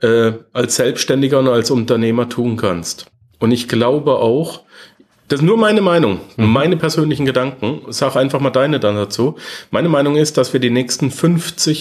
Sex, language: male, German